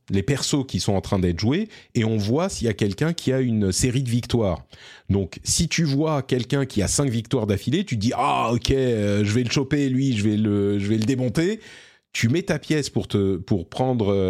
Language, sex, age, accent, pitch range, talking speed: French, male, 30-49, French, 105-145 Hz, 250 wpm